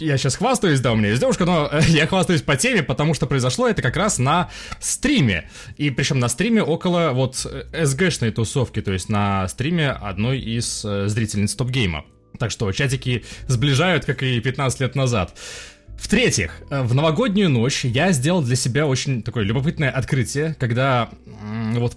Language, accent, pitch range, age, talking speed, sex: Russian, native, 115-160 Hz, 20-39, 180 wpm, male